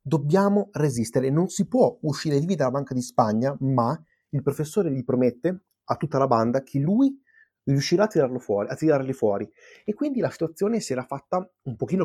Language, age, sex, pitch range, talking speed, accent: Italian, 30-49, male, 130-200 Hz, 195 wpm, native